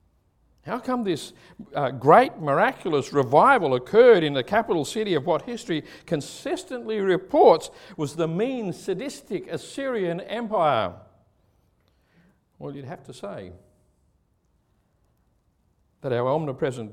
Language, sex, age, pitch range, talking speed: English, male, 60-79, 115-195 Hz, 110 wpm